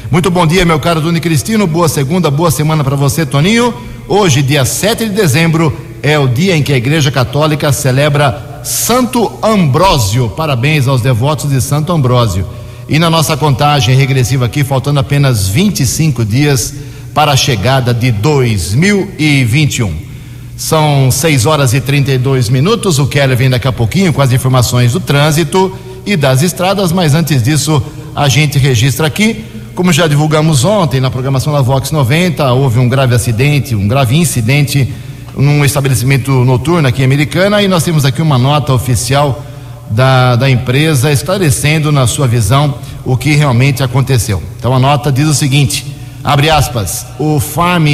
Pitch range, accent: 130-155 Hz, Brazilian